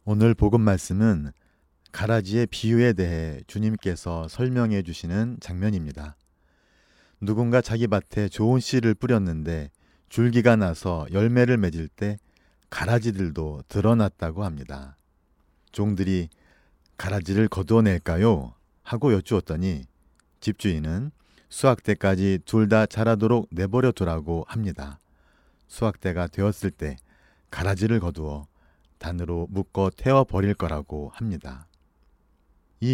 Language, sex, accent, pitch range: Korean, male, native, 80-105 Hz